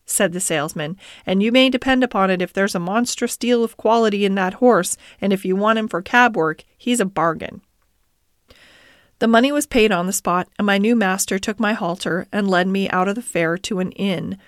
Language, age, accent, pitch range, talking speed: English, 40-59, American, 185-230 Hz, 225 wpm